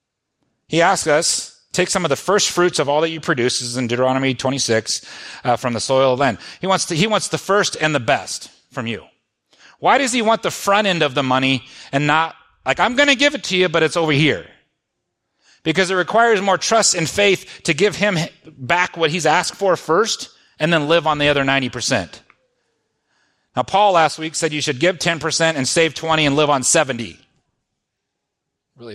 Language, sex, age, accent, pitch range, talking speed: English, male, 30-49, American, 125-180 Hz, 205 wpm